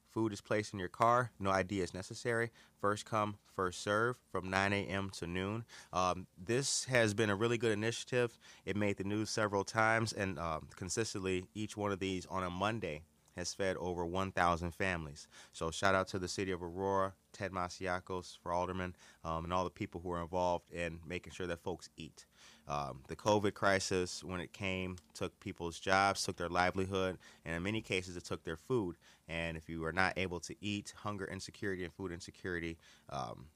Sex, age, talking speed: male, 30-49, 195 wpm